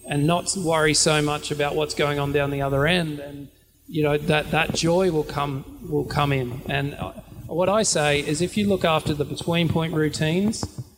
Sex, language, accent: male, English, Australian